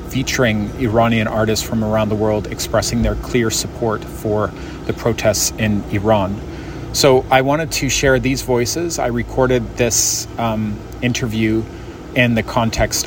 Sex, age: male, 30-49